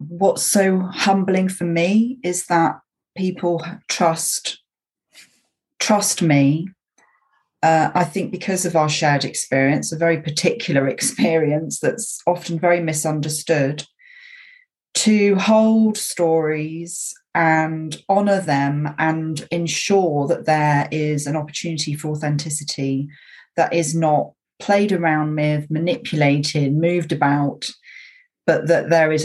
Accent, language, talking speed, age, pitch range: British, English, 115 wpm, 30-49, 150-185 Hz